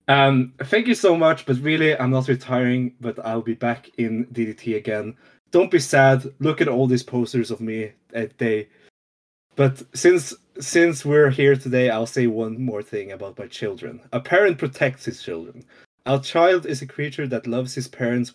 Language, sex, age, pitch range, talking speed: English, male, 20-39, 115-140 Hz, 185 wpm